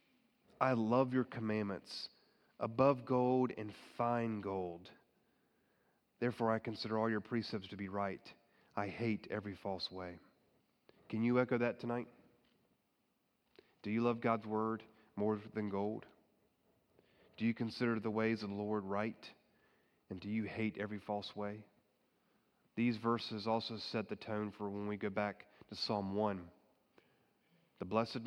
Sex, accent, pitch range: male, American, 105-125 Hz